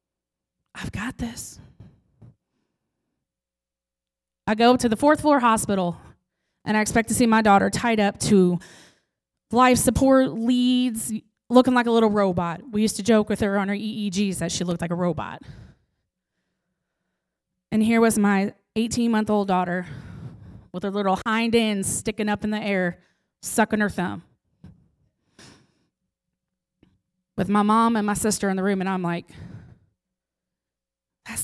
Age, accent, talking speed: 20-39, American, 145 wpm